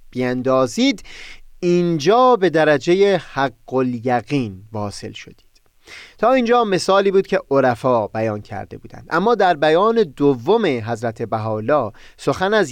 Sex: male